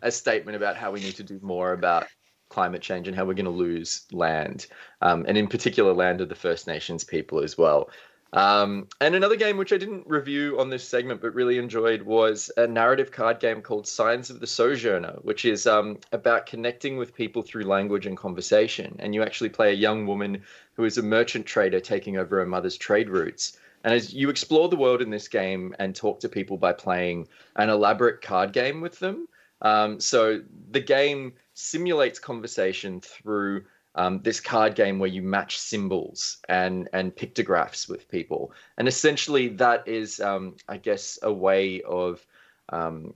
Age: 20-39